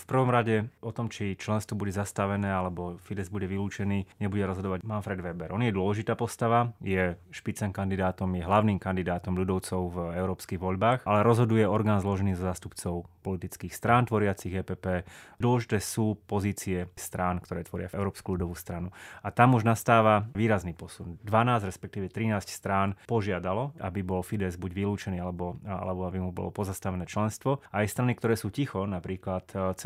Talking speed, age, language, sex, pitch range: 165 wpm, 30-49, Slovak, male, 95-105 Hz